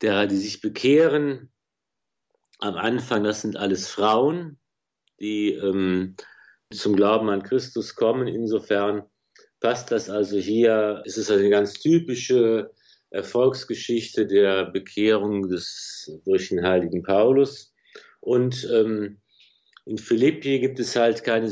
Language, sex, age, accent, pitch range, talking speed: German, male, 50-69, German, 105-135 Hz, 120 wpm